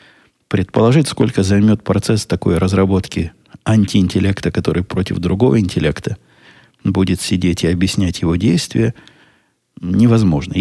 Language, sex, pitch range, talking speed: Russian, male, 85-105 Hz, 100 wpm